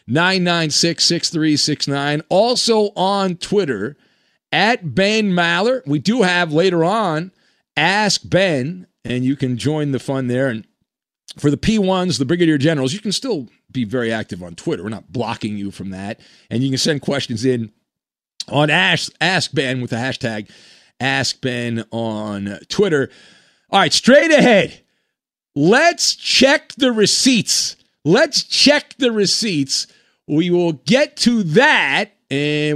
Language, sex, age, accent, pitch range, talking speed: English, male, 40-59, American, 140-215 Hz, 155 wpm